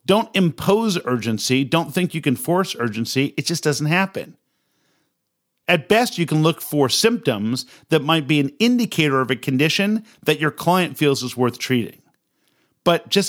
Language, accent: English, American